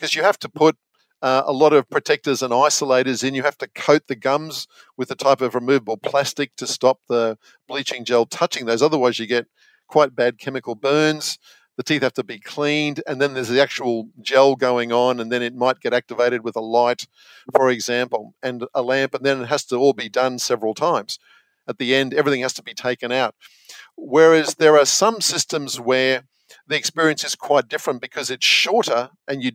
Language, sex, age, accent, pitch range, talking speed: English, male, 50-69, Australian, 125-145 Hz, 205 wpm